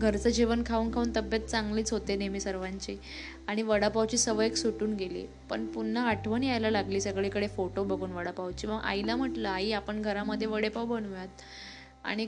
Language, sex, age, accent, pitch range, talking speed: Marathi, female, 20-39, native, 190-220 Hz, 160 wpm